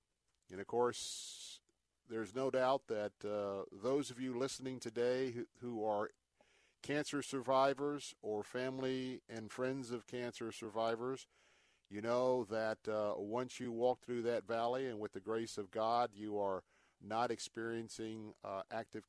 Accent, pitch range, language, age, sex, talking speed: American, 110-130 Hz, English, 50-69, male, 150 wpm